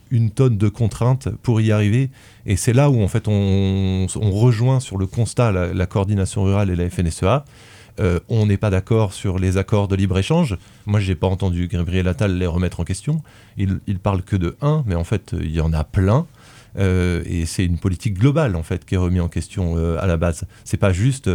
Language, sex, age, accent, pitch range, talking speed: French, male, 30-49, French, 95-120 Hz, 225 wpm